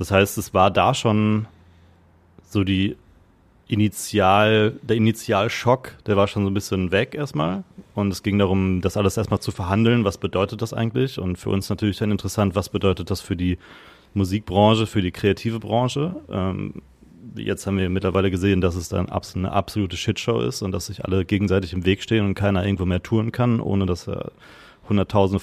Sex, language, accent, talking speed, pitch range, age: male, German, German, 185 wpm, 95-115 Hz, 30-49